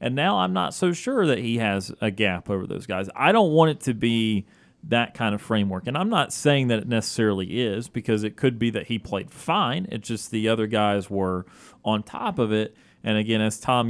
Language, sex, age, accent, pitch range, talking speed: English, male, 30-49, American, 100-130 Hz, 235 wpm